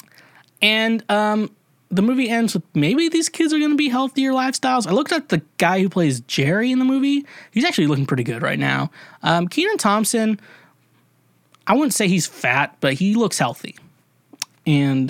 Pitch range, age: 140-225 Hz, 20-39